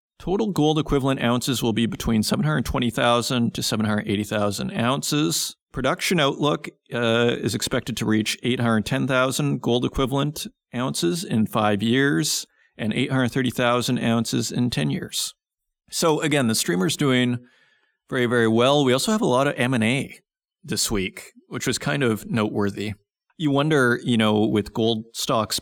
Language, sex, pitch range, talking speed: English, male, 110-140 Hz, 145 wpm